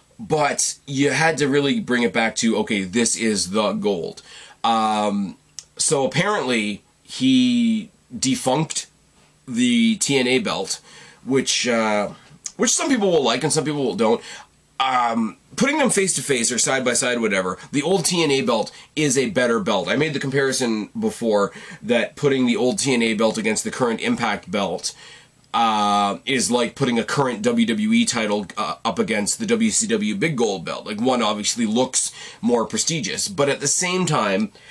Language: English